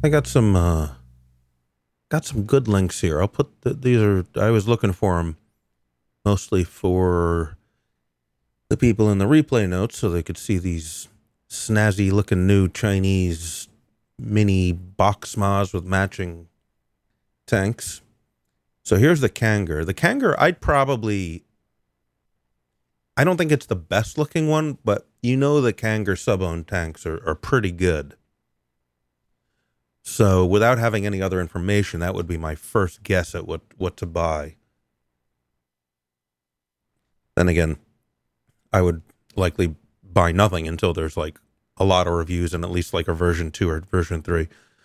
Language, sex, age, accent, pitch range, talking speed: English, male, 30-49, American, 80-110 Hz, 145 wpm